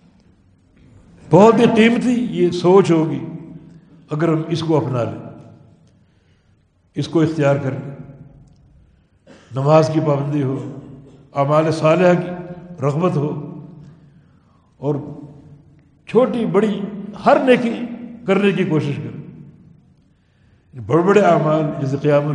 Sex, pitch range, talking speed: male, 145-205 Hz, 100 wpm